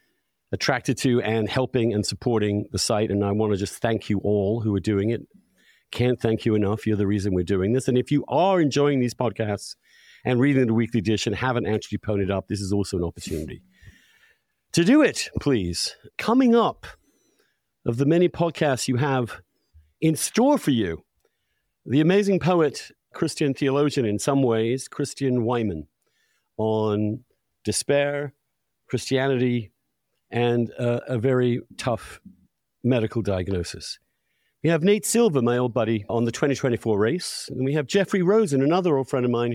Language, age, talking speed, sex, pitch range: English, 50-69, 165 wpm, male, 110-145 Hz